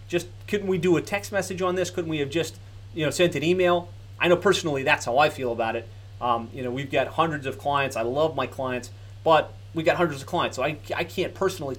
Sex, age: male, 30-49